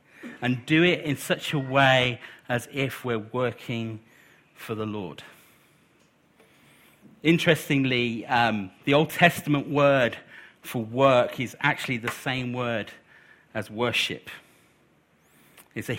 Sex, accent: male, British